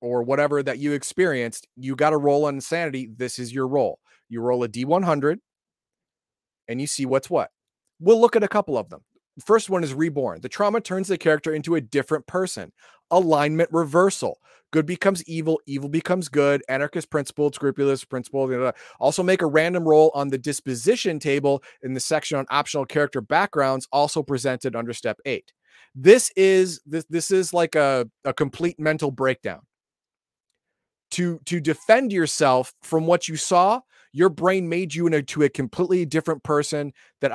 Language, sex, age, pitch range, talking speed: English, male, 30-49, 135-175 Hz, 180 wpm